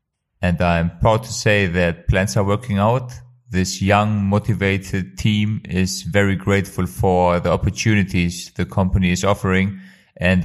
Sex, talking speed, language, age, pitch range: male, 145 wpm, English, 30-49, 90-100 Hz